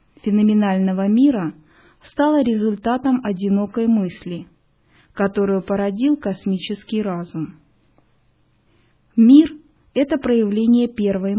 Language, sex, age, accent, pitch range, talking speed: Russian, female, 20-39, native, 185-240 Hz, 80 wpm